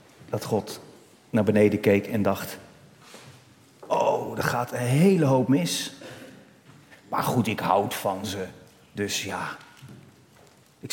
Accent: Dutch